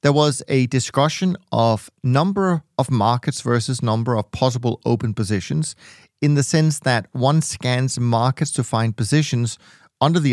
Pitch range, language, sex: 115-145 Hz, English, male